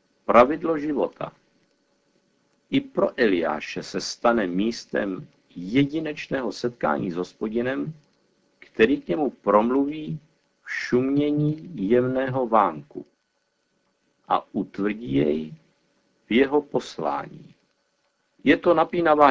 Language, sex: Czech, male